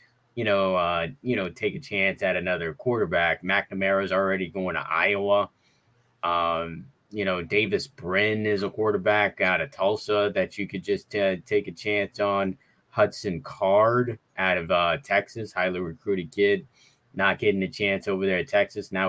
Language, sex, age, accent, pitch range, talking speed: English, male, 20-39, American, 95-120 Hz, 170 wpm